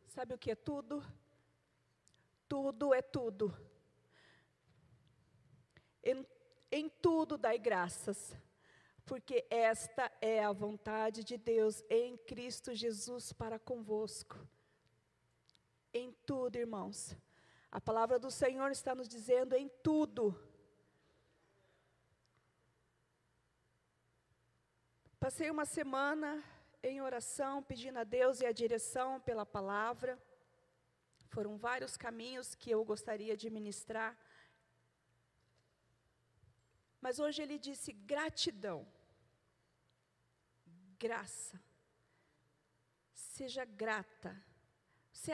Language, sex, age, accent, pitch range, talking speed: Portuguese, female, 40-59, Brazilian, 215-265 Hz, 90 wpm